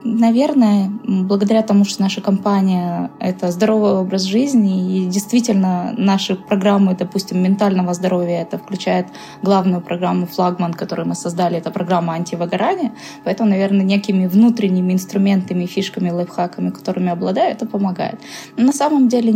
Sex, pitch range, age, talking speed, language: female, 185-215 Hz, 20-39, 130 wpm, Russian